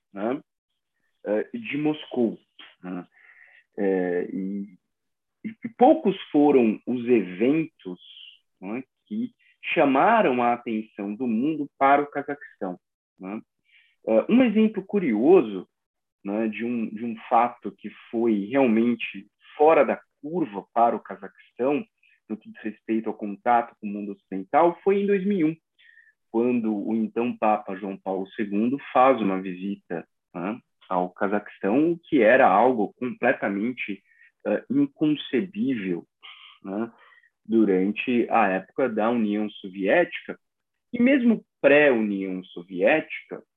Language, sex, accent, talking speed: Portuguese, male, Brazilian, 110 wpm